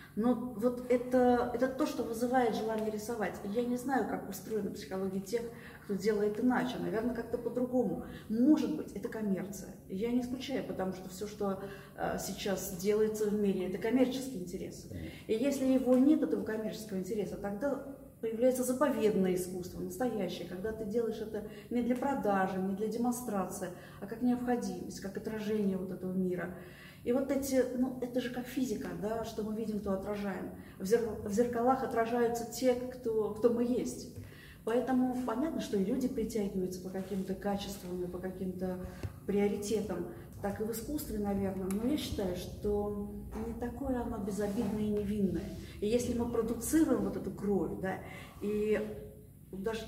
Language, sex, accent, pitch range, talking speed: Russian, female, native, 195-245 Hz, 160 wpm